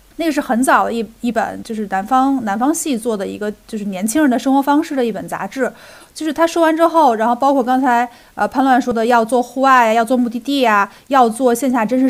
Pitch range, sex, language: 220-270 Hz, female, Chinese